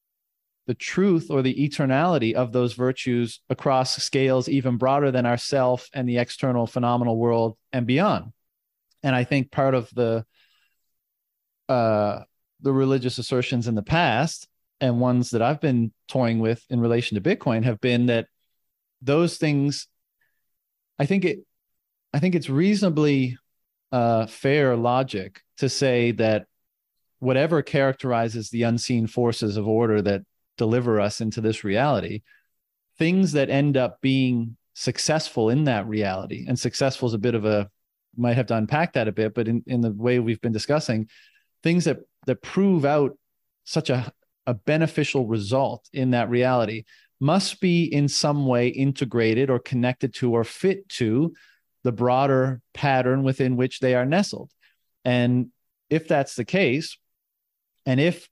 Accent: American